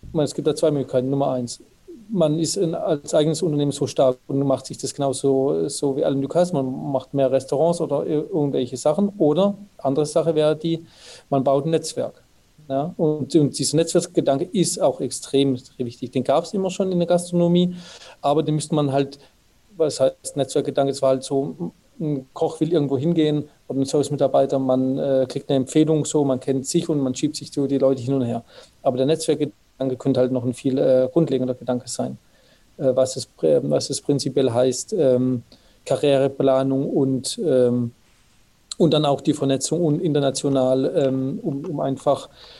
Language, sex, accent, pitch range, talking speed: German, male, German, 130-155 Hz, 185 wpm